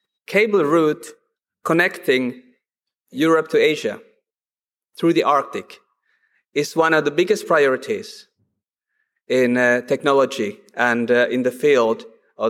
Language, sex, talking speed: English, male, 115 wpm